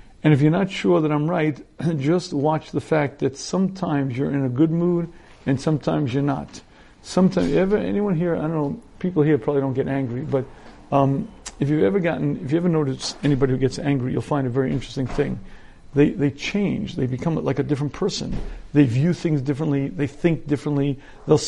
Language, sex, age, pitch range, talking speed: English, male, 50-69, 140-165 Hz, 205 wpm